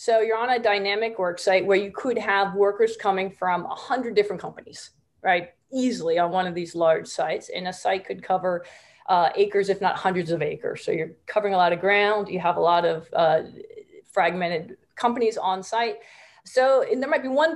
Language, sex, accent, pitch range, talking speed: English, female, American, 185-240 Hz, 210 wpm